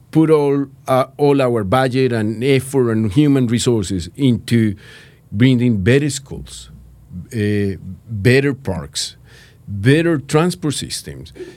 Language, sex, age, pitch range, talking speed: English, male, 50-69, 115-150 Hz, 110 wpm